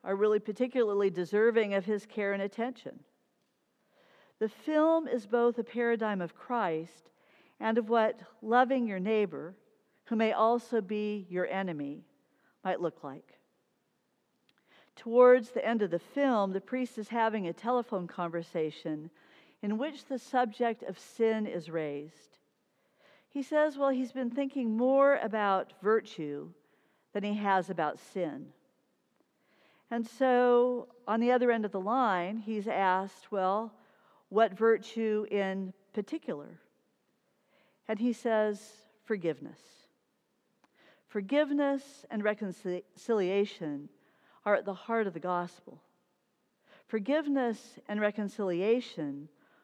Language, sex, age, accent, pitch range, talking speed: English, female, 50-69, American, 195-240 Hz, 120 wpm